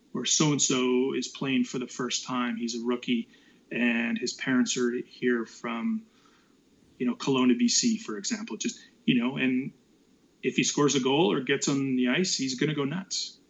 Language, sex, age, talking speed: English, male, 30-49, 185 wpm